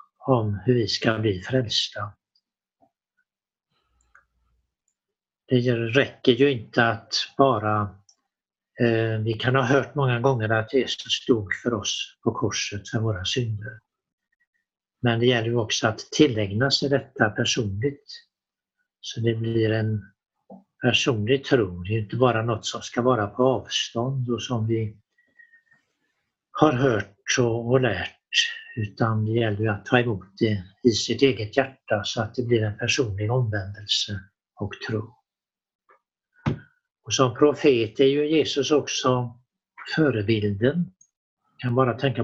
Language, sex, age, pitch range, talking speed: Swedish, male, 60-79, 110-140 Hz, 130 wpm